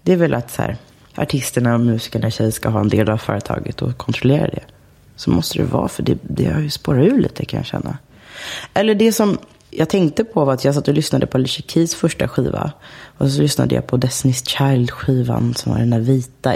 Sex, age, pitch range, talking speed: female, 30-49, 115-160 Hz, 230 wpm